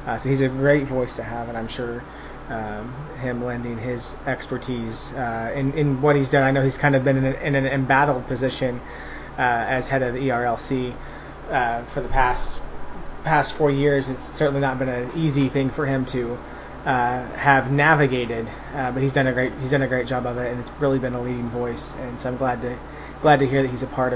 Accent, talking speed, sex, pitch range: American, 230 wpm, male, 125-145 Hz